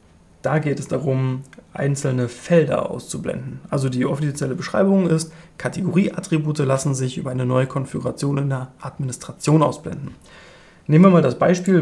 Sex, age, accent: male, 30-49, German